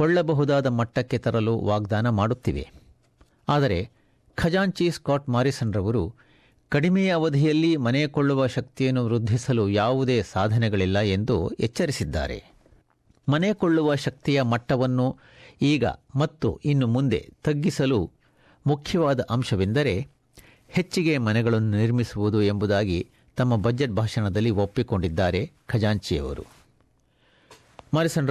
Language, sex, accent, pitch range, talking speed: Kannada, male, native, 115-145 Hz, 80 wpm